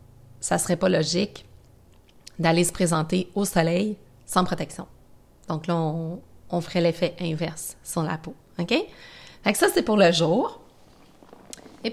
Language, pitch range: French, 165-210 Hz